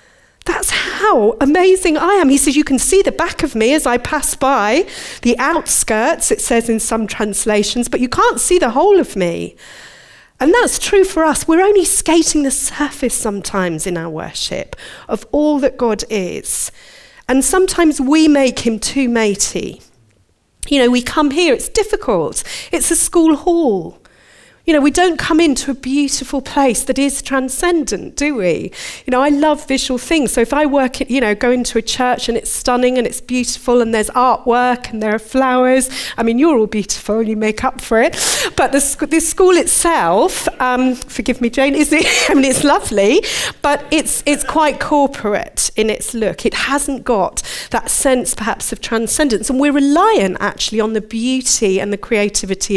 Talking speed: 190 wpm